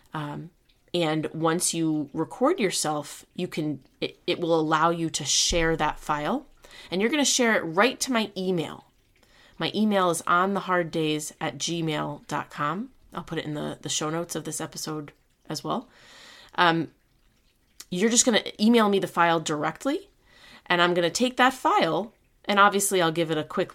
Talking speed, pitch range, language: 185 wpm, 155-190 Hz, English